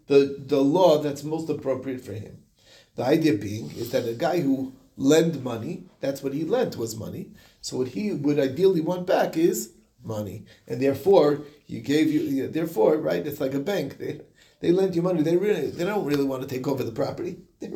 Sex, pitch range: male, 135-175 Hz